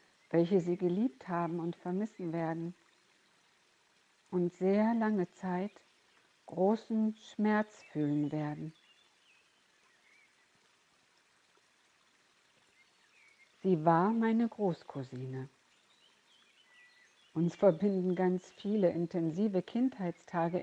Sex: female